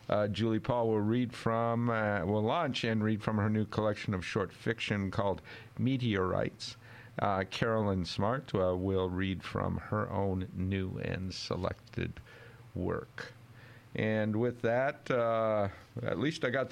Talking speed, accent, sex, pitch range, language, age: 145 wpm, American, male, 95-115 Hz, English, 50-69